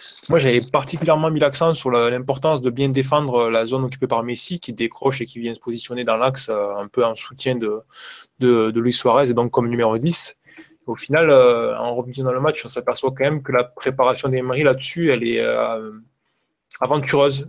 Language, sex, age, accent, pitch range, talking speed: French, male, 20-39, French, 120-140 Hz, 210 wpm